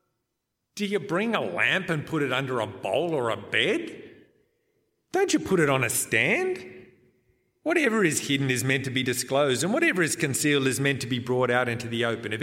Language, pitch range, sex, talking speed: English, 110-165 Hz, male, 210 wpm